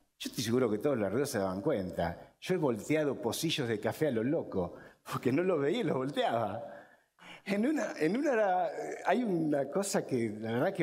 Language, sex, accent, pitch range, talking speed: Spanish, male, Argentinian, 140-185 Hz, 185 wpm